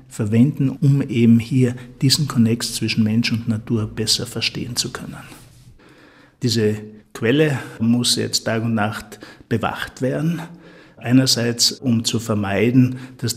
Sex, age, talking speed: male, 50-69, 125 wpm